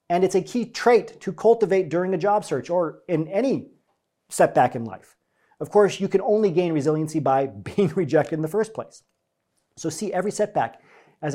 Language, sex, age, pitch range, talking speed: English, male, 40-59, 140-195 Hz, 190 wpm